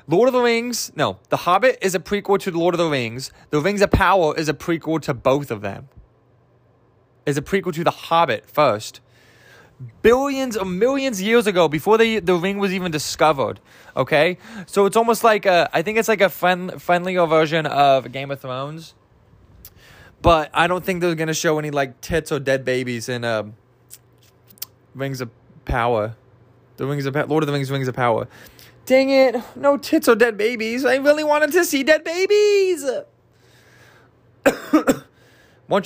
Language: English